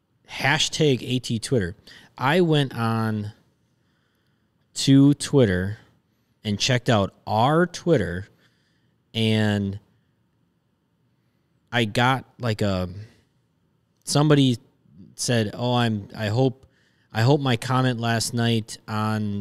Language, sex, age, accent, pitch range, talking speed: English, male, 20-39, American, 105-130 Hz, 95 wpm